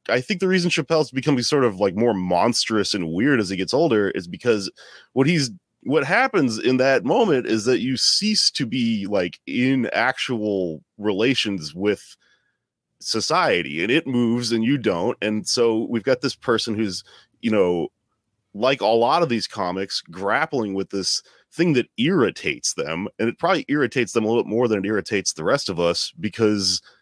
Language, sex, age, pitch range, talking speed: English, male, 30-49, 95-130 Hz, 185 wpm